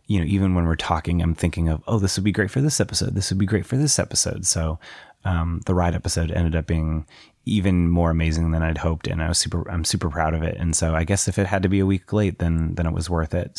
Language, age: English, 30-49